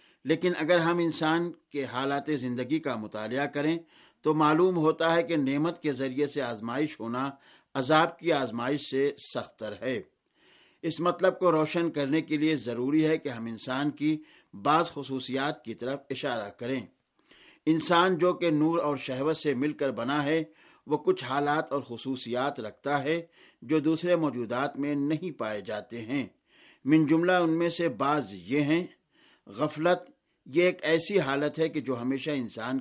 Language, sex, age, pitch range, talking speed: Urdu, male, 60-79, 135-160 Hz, 165 wpm